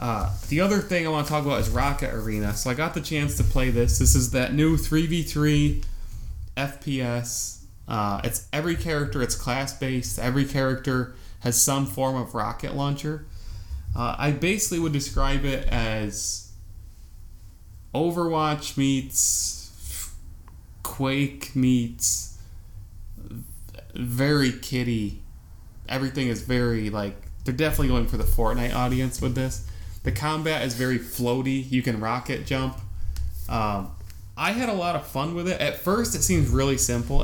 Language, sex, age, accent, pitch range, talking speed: English, male, 20-39, American, 100-140 Hz, 145 wpm